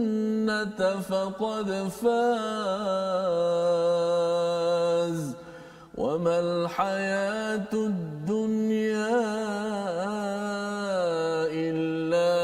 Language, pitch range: Malayalam, 195-230 Hz